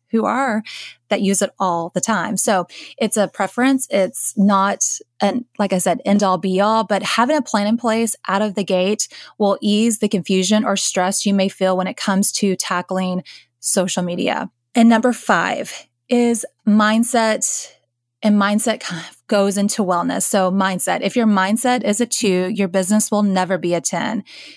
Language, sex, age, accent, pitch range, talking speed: English, female, 20-39, American, 185-225 Hz, 185 wpm